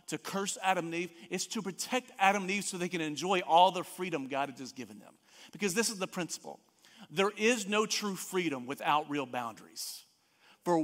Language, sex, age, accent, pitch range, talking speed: English, male, 40-59, American, 170-215 Hz, 205 wpm